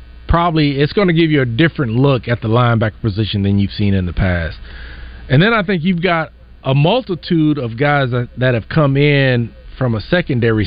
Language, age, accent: English, 40-59, American